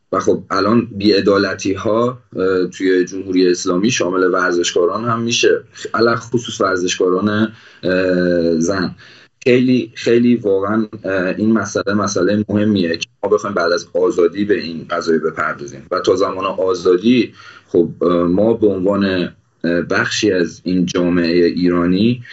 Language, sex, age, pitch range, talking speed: Persian, male, 30-49, 90-105 Hz, 125 wpm